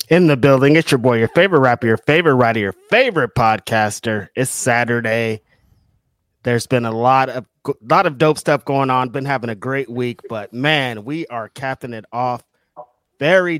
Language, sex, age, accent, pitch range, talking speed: English, male, 30-49, American, 115-140 Hz, 180 wpm